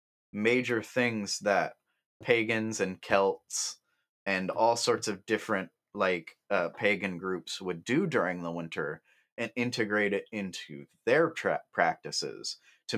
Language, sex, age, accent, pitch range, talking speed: English, male, 30-49, American, 90-115 Hz, 125 wpm